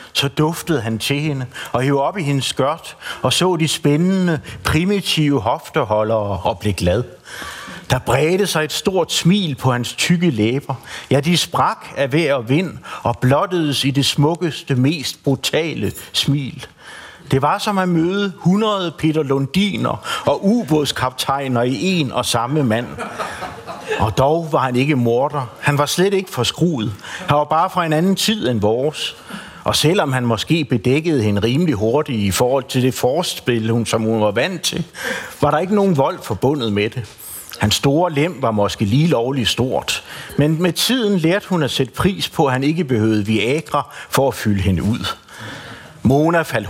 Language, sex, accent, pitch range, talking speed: Danish, male, native, 120-165 Hz, 175 wpm